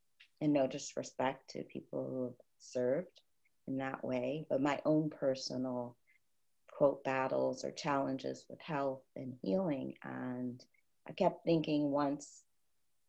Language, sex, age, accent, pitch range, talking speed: English, female, 30-49, American, 125-155 Hz, 130 wpm